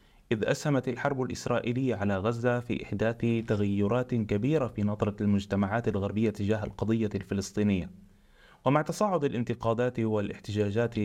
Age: 30-49